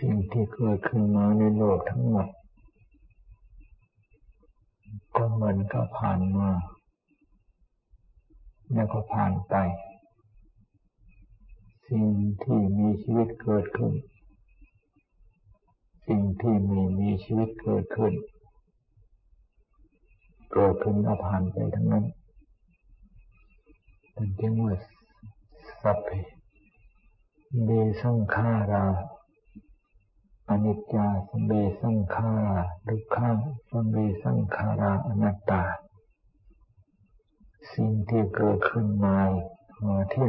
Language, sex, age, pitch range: Thai, male, 60-79, 100-110 Hz